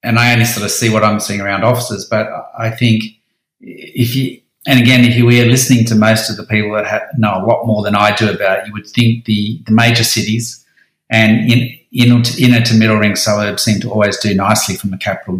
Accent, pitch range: Australian, 105-120 Hz